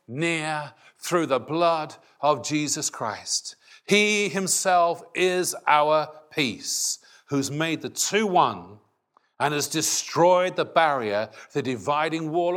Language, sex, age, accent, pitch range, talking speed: English, male, 40-59, British, 120-180 Hz, 120 wpm